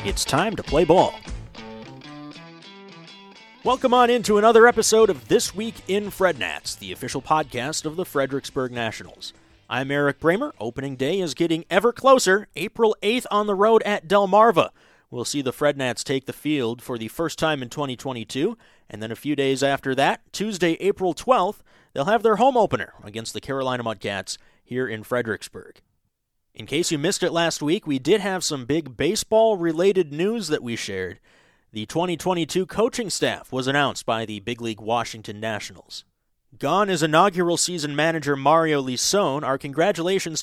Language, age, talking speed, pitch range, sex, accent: English, 30-49, 165 wpm, 130-190 Hz, male, American